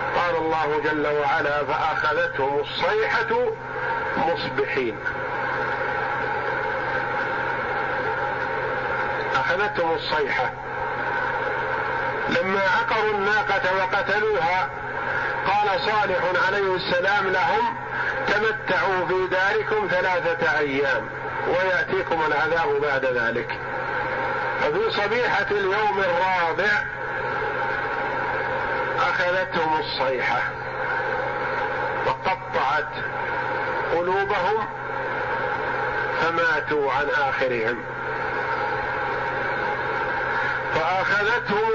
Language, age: Arabic, 50-69